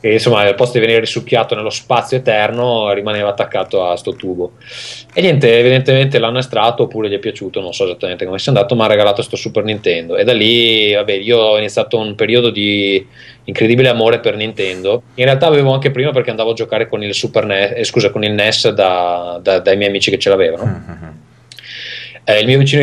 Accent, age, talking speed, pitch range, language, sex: native, 20-39, 210 wpm, 105-145 Hz, Italian, male